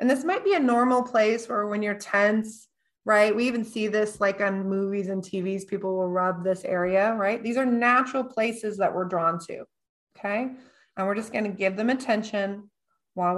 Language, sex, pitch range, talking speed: English, female, 200-255 Hz, 200 wpm